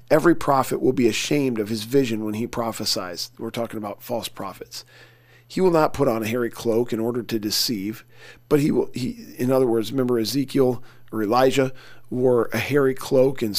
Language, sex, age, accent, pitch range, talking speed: English, male, 40-59, American, 115-135 Hz, 190 wpm